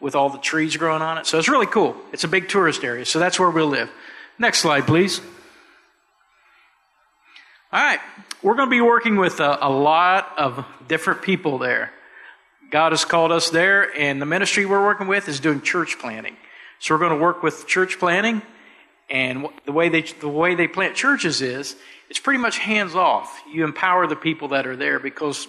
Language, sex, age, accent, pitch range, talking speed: English, male, 50-69, American, 145-190 Hz, 200 wpm